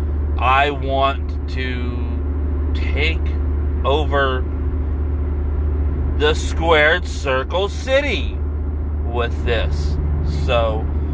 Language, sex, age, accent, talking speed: English, male, 30-49, American, 65 wpm